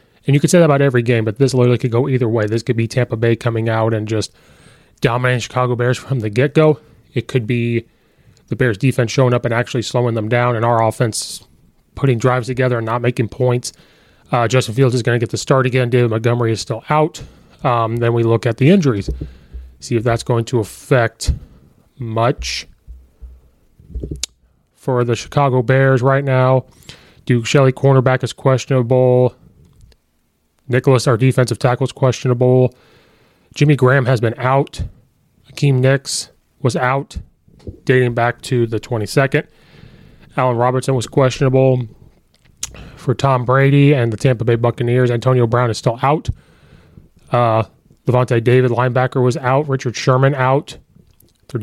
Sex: male